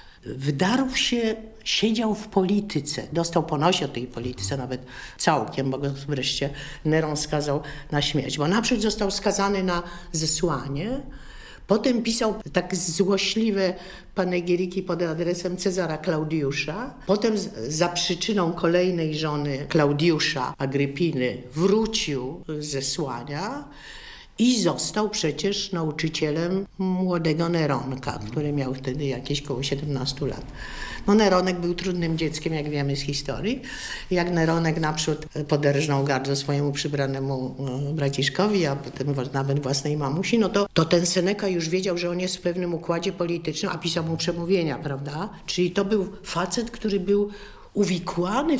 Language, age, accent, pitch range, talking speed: Polish, 50-69, native, 145-195 Hz, 125 wpm